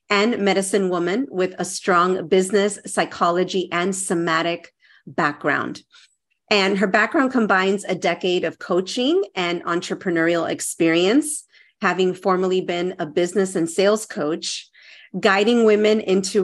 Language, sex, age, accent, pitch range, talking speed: English, female, 40-59, American, 180-225 Hz, 120 wpm